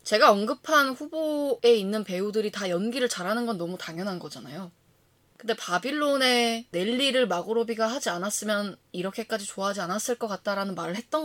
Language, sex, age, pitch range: Korean, female, 20-39, 175-230 Hz